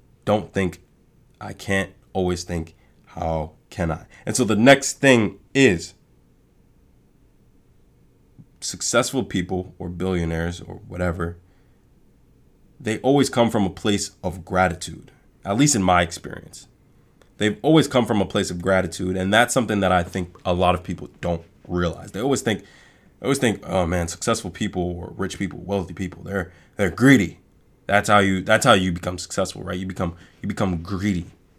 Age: 20-39